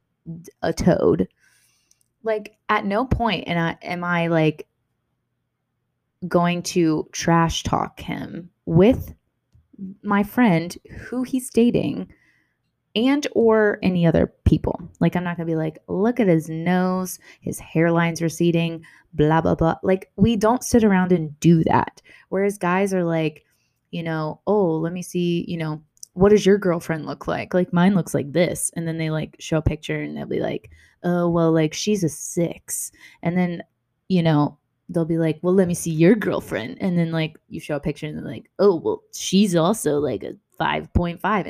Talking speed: 175 wpm